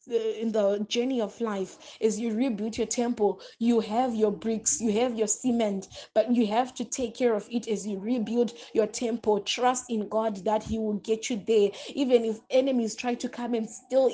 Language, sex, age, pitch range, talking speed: English, female, 20-39, 210-240 Hz, 210 wpm